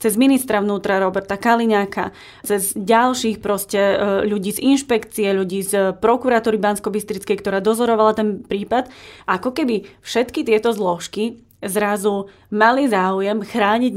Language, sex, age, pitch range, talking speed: Slovak, female, 20-39, 205-235 Hz, 115 wpm